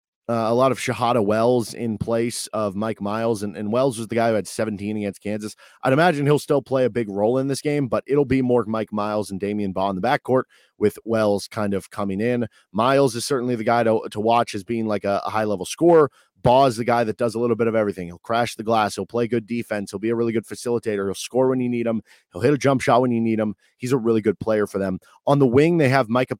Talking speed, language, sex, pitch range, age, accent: 270 wpm, English, male, 110-130 Hz, 30-49, American